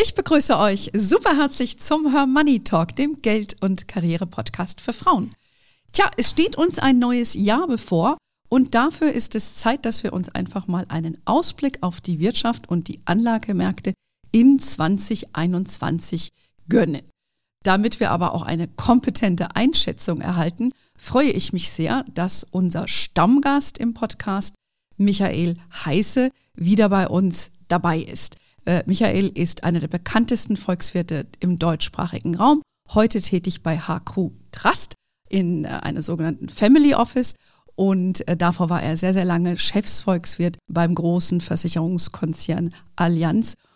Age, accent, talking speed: 40-59, German, 135 wpm